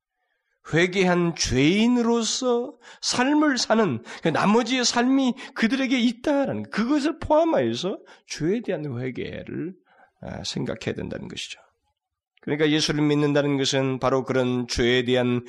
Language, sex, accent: Korean, male, native